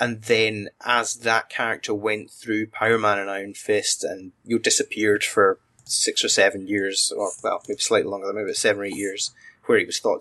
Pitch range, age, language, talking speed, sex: 110-135 Hz, 20-39, English, 205 wpm, male